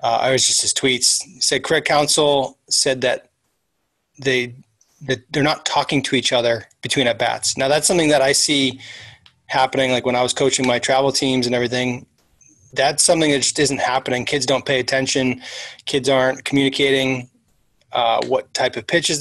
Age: 20-39